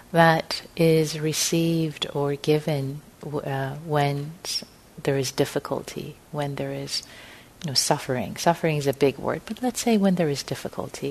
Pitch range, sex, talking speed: 155-210 Hz, female, 140 wpm